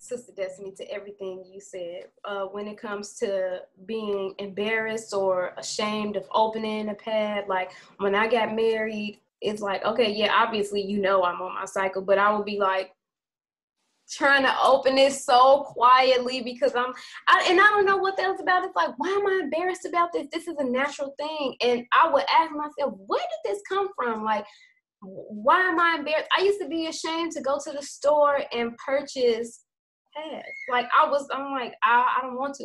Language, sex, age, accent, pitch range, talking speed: English, female, 20-39, American, 215-310 Hz, 200 wpm